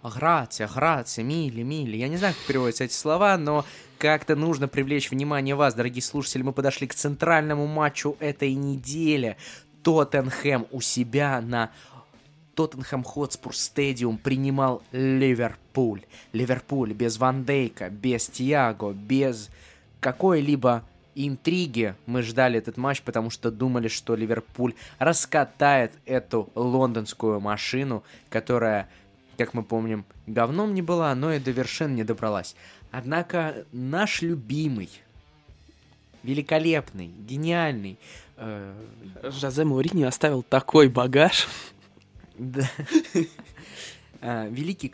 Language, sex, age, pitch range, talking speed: Russian, male, 20-39, 115-145 Hz, 110 wpm